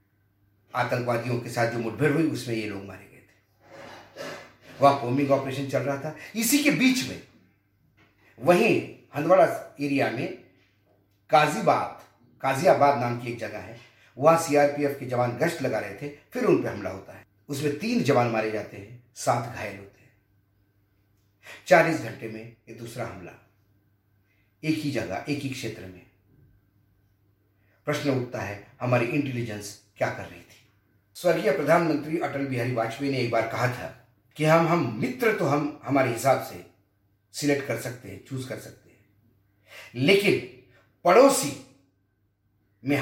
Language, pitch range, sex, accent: Hindi, 105-140 Hz, male, native